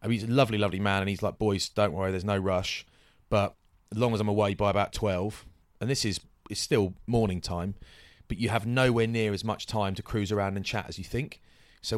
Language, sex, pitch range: English, male, 95-110 Hz